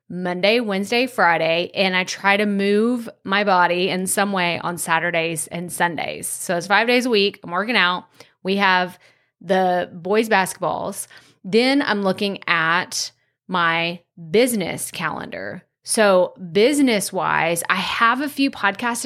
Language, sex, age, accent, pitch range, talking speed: English, female, 30-49, American, 180-220 Hz, 140 wpm